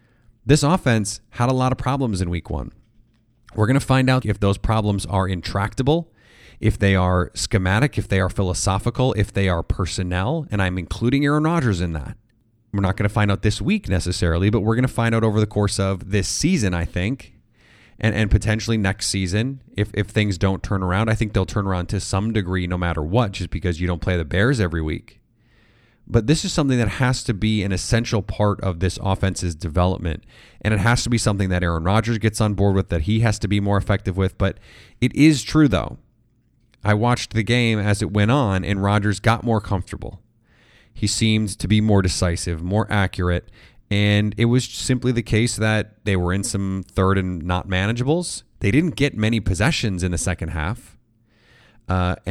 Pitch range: 95-120 Hz